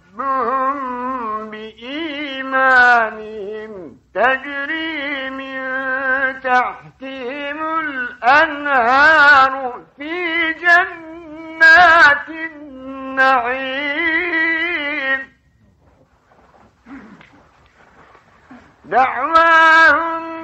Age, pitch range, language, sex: 50-69, 245-325 Hz, Turkish, male